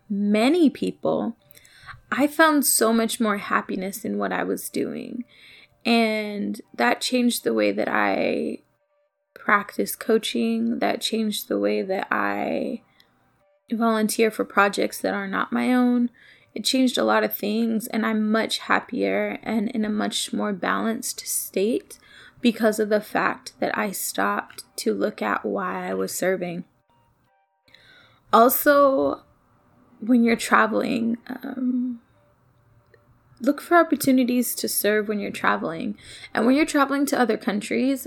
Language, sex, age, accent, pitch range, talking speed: English, female, 20-39, American, 205-250 Hz, 135 wpm